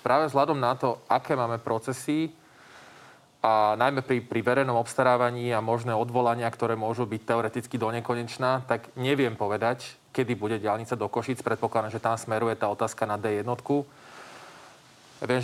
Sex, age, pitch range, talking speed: male, 20-39, 110-125 Hz, 150 wpm